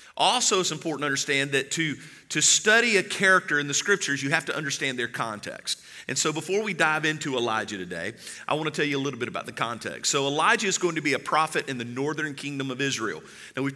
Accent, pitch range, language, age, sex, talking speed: American, 140-170 Hz, English, 40-59, male, 240 wpm